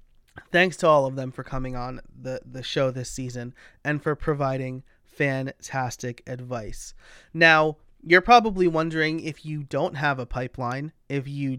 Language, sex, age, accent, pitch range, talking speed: English, male, 30-49, American, 130-175 Hz, 155 wpm